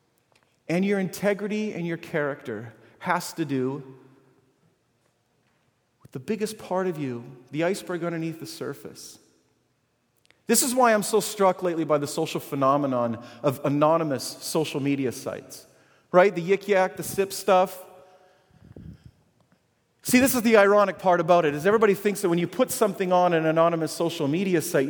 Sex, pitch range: male, 130-185 Hz